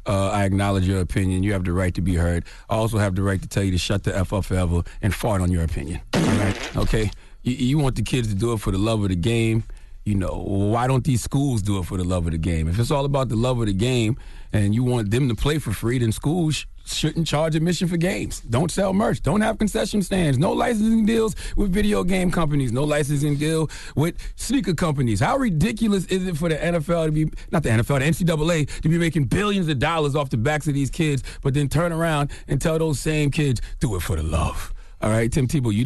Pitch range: 105-160 Hz